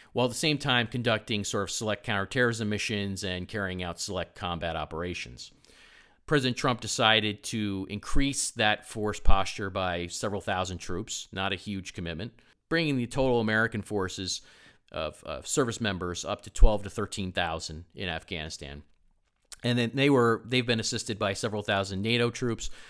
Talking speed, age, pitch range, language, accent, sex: 160 wpm, 40-59, 90-115 Hz, English, American, male